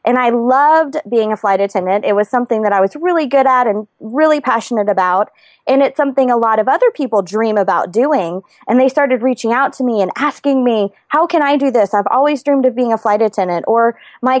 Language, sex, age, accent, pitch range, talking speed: English, female, 20-39, American, 200-270 Hz, 235 wpm